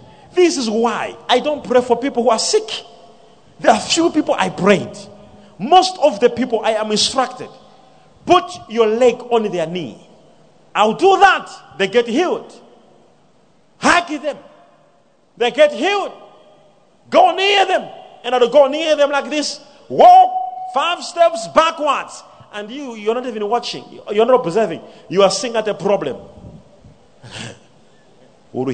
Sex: male